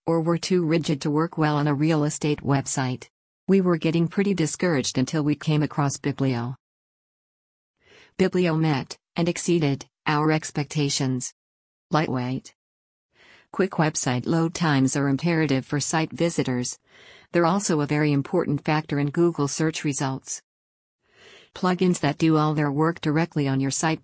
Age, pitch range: 50-69, 140-165 Hz